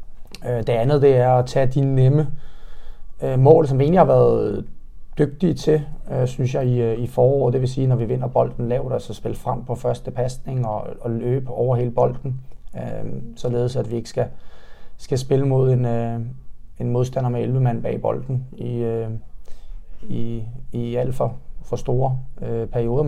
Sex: male